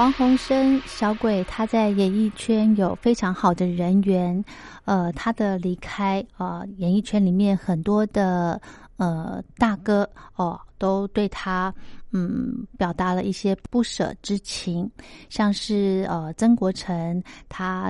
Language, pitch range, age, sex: Chinese, 180-210 Hz, 30-49, female